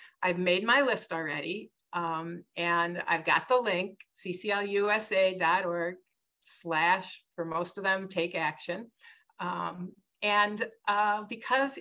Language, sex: English, female